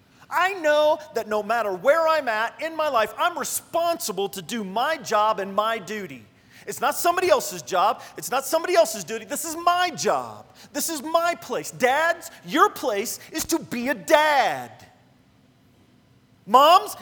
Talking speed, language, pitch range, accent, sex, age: 165 wpm, English, 205-325 Hz, American, male, 40-59